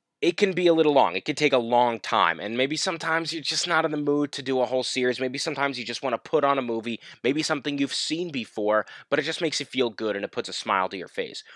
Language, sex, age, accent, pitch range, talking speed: English, male, 20-39, American, 115-145 Hz, 290 wpm